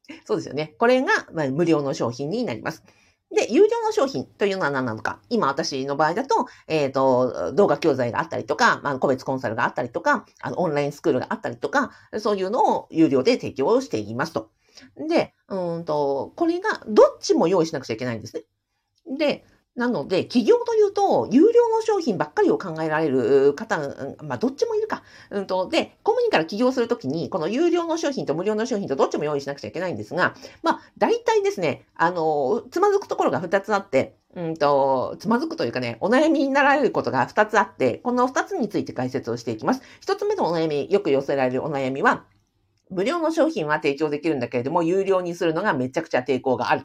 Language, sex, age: Japanese, female, 50-69